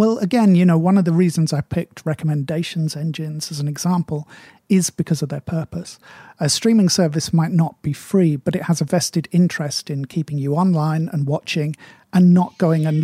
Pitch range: 155-185 Hz